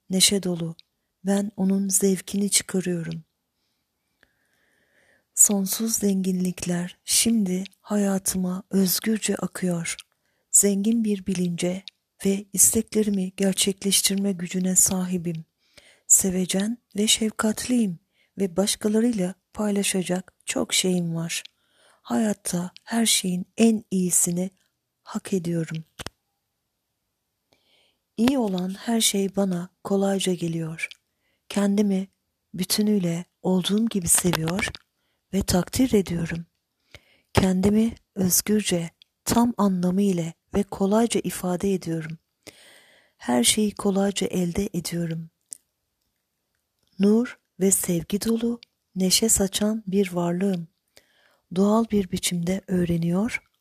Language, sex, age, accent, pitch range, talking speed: Turkish, female, 40-59, native, 180-210 Hz, 85 wpm